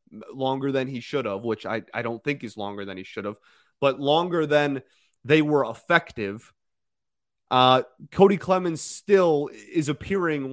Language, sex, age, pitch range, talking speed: English, male, 30-49, 110-150 Hz, 160 wpm